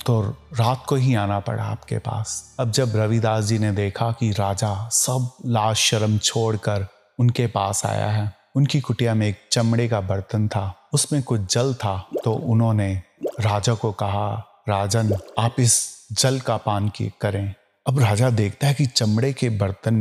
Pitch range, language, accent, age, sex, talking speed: 105-120 Hz, Hindi, native, 30-49, male, 170 wpm